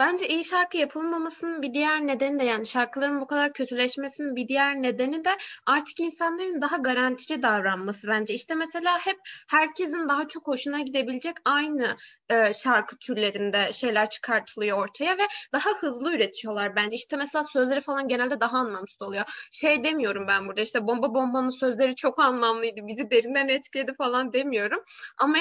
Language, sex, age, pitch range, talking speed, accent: Turkish, female, 20-39, 250-335 Hz, 160 wpm, native